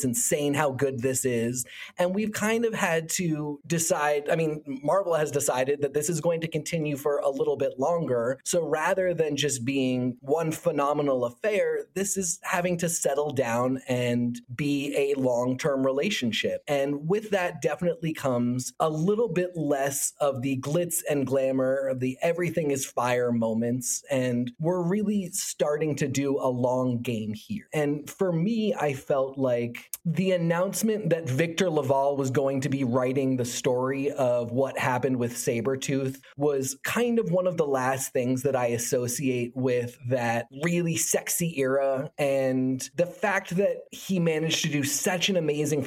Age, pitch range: 30-49, 130-170 Hz